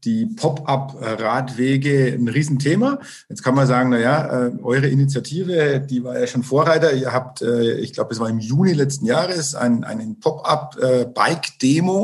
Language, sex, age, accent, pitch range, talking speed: German, male, 50-69, German, 120-145 Hz, 145 wpm